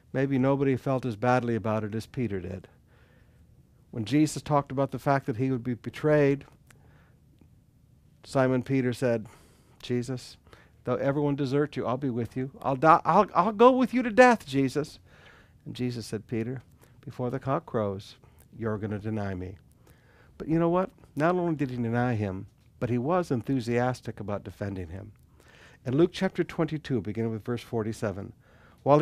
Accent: American